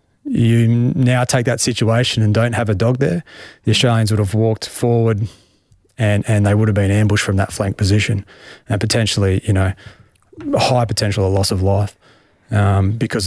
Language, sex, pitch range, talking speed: English, male, 100-115 Hz, 180 wpm